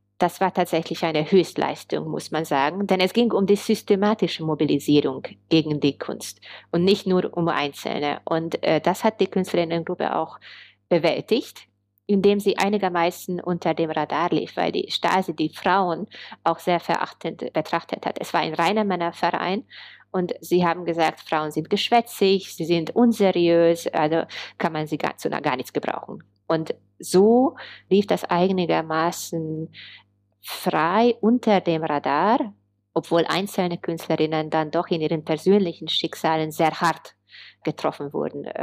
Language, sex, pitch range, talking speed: German, female, 155-190 Hz, 145 wpm